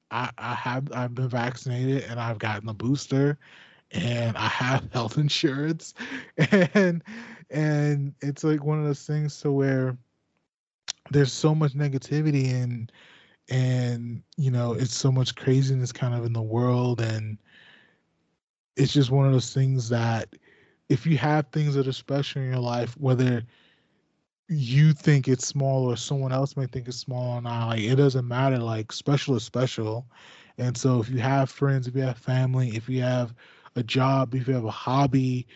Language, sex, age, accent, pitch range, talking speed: English, male, 20-39, American, 120-140 Hz, 170 wpm